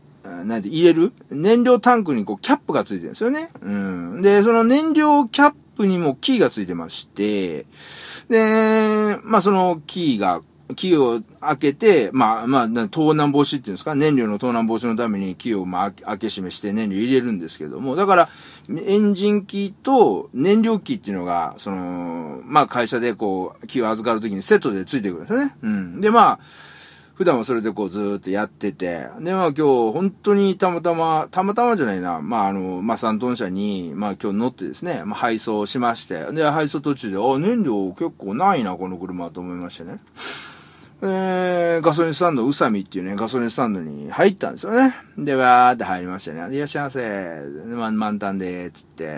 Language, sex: Japanese, male